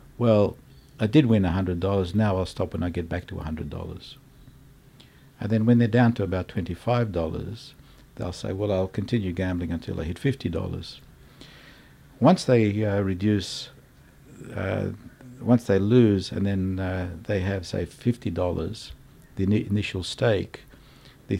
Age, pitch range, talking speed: 60-79, 90-115 Hz, 165 wpm